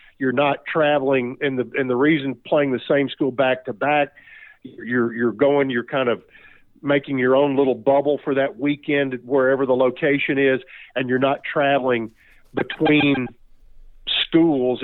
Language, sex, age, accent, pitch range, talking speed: English, male, 50-69, American, 125-145 Hz, 160 wpm